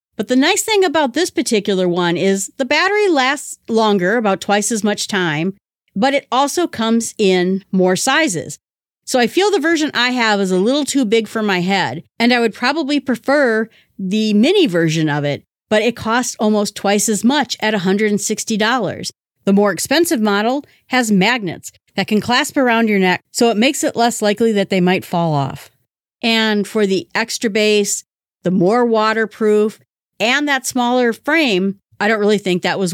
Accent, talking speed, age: American, 180 wpm, 40-59